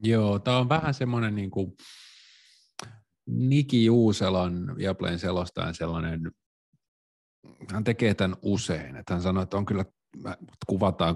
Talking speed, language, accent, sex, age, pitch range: 120 wpm, Finnish, native, male, 30-49, 80-100 Hz